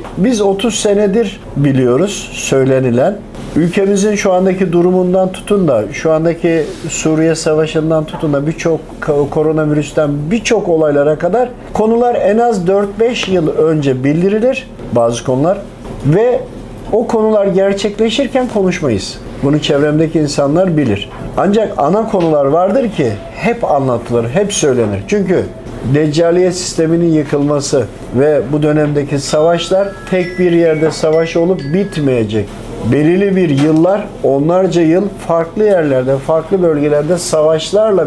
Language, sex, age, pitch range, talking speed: Turkish, male, 50-69, 140-185 Hz, 115 wpm